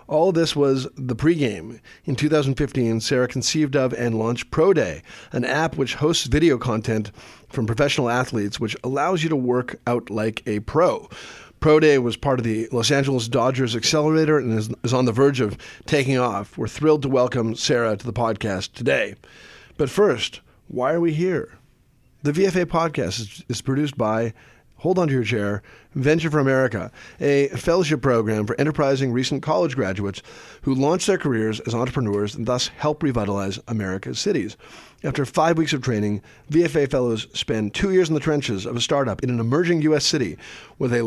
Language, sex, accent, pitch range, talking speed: English, male, American, 110-145 Hz, 180 wpm